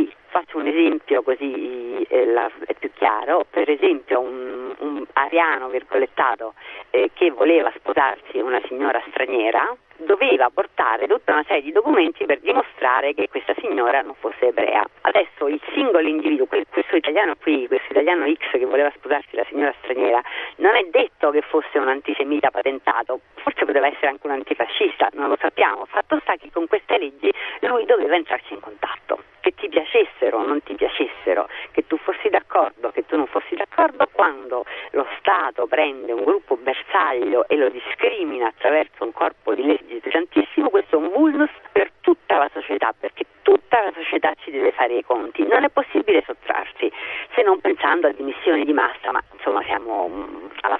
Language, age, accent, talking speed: Italian, 40-59, native, 160 wpm